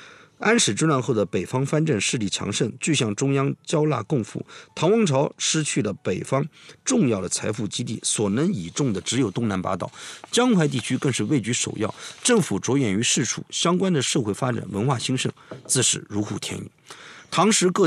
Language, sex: Chinese, male